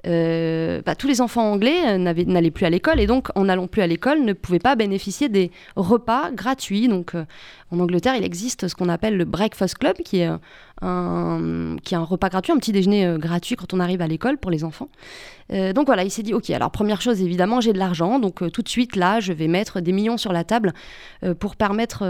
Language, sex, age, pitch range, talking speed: French, female, 20-39, 175-225 Hz, 245 wpm